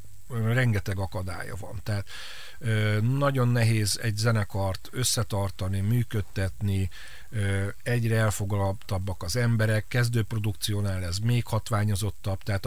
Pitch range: 100-115 Hz